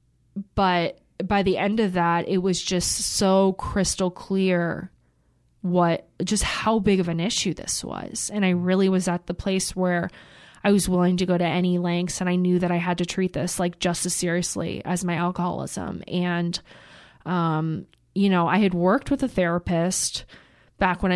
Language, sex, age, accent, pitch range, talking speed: English, female, 20-39, American, 175-200 Hz, 185 wpm